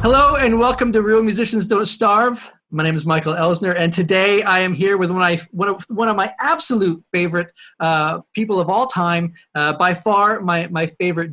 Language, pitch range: English, 150-200 Hz